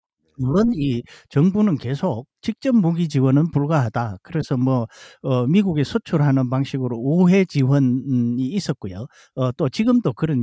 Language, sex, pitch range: Korean, male, 115-175 Hz